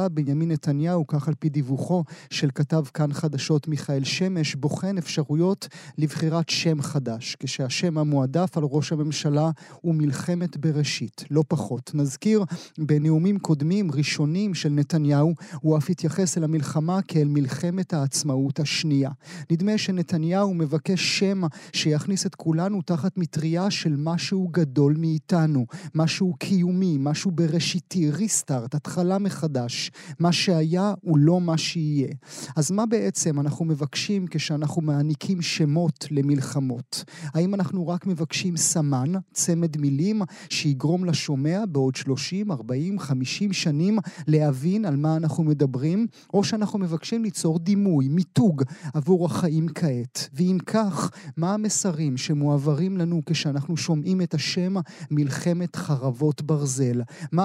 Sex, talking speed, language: male, 125 wpm, Hebrew